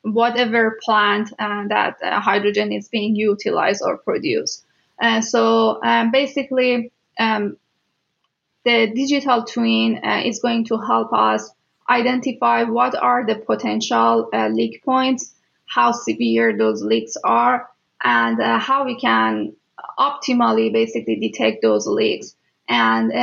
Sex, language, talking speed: female, English, 125 wpm